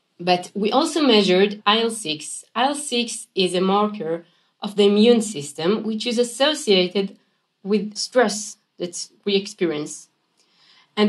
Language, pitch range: English, 180-220 Hz